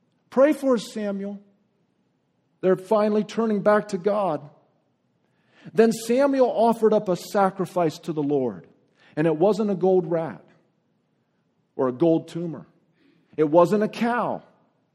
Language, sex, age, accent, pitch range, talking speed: English, male, 50-69, American, 150-210 Hz, 130 wpm